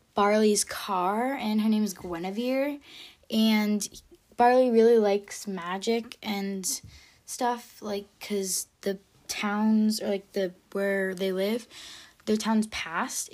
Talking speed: 120 wpm